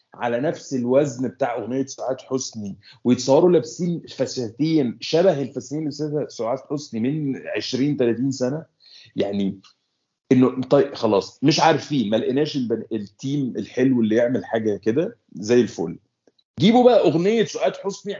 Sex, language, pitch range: male, Arabic, 115-150 Hz